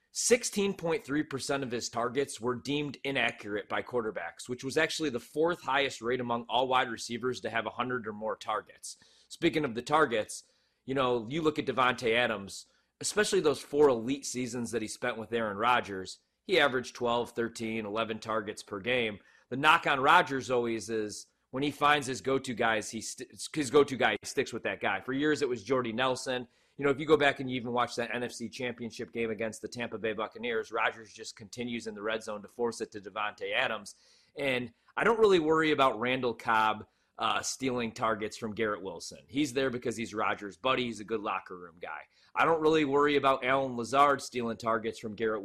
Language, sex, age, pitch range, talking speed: English, male, 30-49, 115-135 Hz, 200 wpm